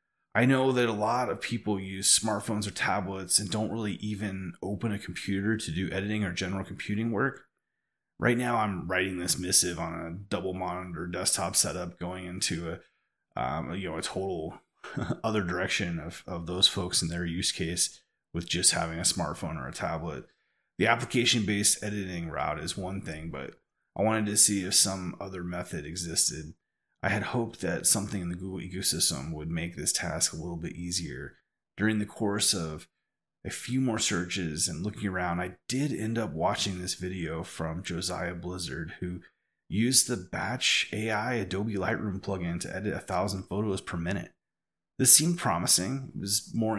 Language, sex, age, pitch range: English, male, 30-49, 90-105 Hz